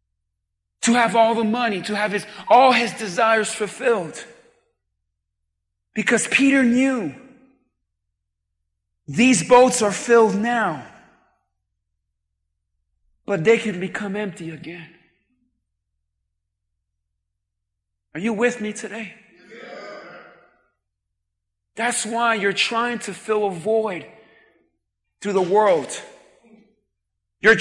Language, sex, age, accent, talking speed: English, male, 40-59, American, 95 wpm